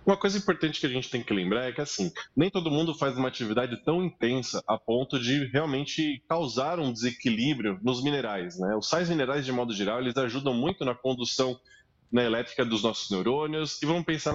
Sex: male